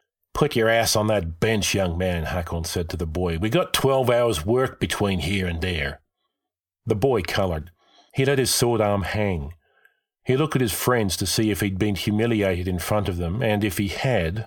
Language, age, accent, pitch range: English, 40-59, Australian, 90-115 Hz